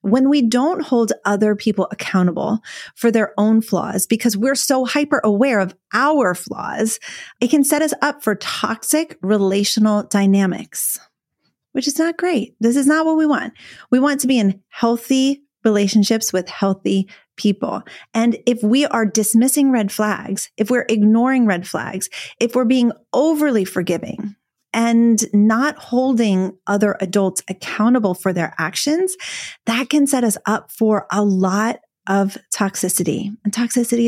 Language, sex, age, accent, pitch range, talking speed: English, female, 30-49, American, 200-250 Hz, 150 wpm